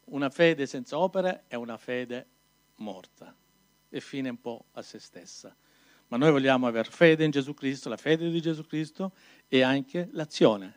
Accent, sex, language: native, male, Italian